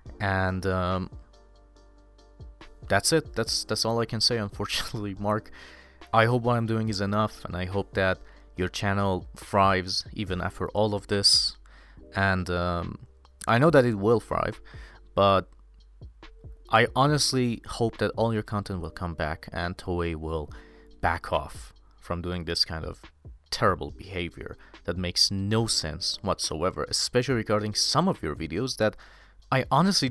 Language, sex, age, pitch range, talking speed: English, male, 30-49, 90-115 Hz, 150 wpm